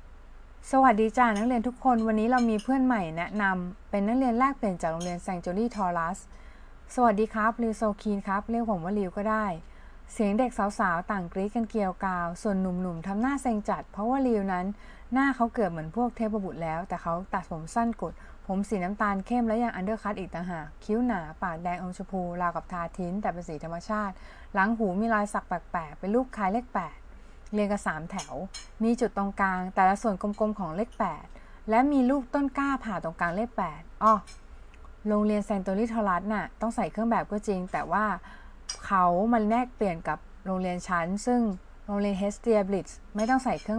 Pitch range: 180-225 Hz